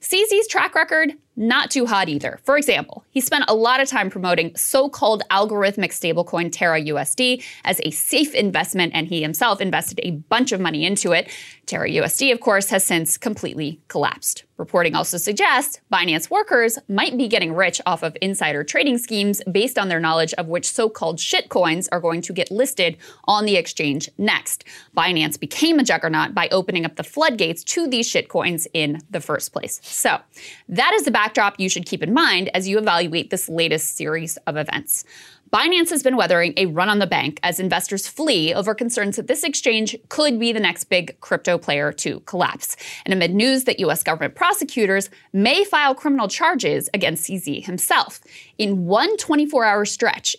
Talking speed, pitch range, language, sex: 180 wpm, 175-265 Hz, English, female